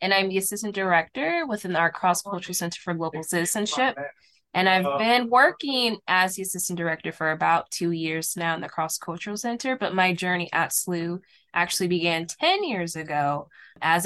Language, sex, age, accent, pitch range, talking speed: English, female, 20-39, American, 165-195 Hz, 170 wpm